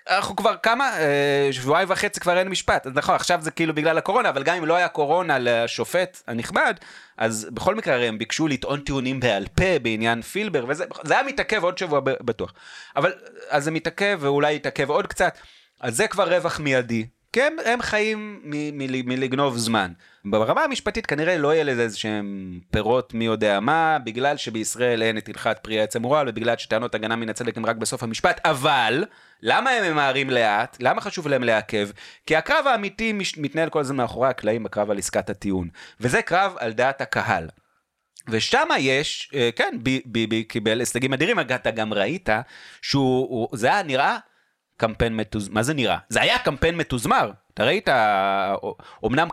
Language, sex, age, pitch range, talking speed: Hebrew, male, 30-49, 115-165 Hz, 175 wpm